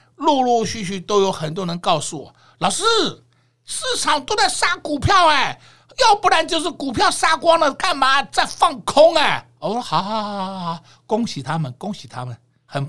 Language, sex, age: Chinese, male, 60-79